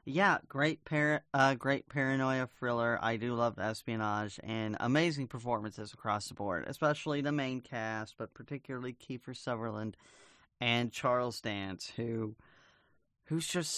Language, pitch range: English, 115-150 Hz